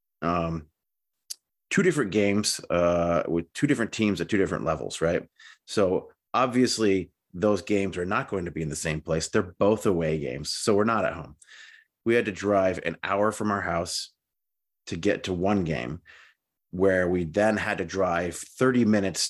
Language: English